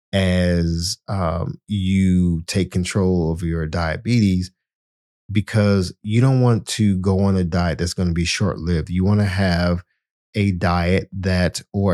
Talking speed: 155 wpm